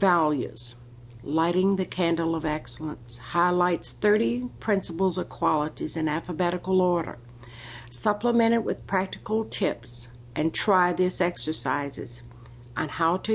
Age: 50-69